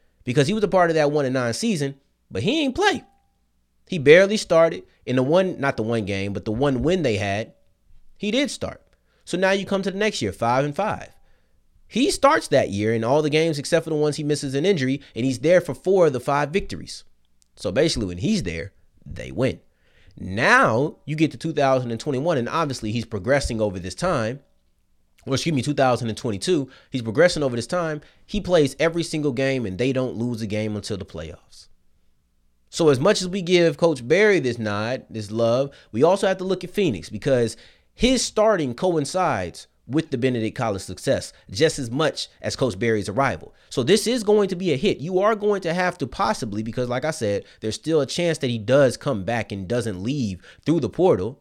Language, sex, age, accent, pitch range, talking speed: English, male, 30-49, American, 110-165 Hz, 210 wpm